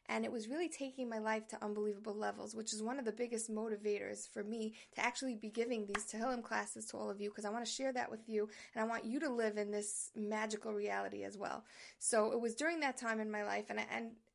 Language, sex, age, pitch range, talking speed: English, female, 20-39, 220-275 Hz, 255 wpm